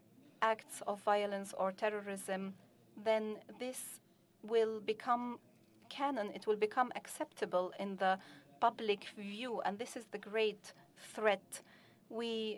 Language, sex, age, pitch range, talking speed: Arabic, female, 30-49, 195-225 Hz, 120 wpm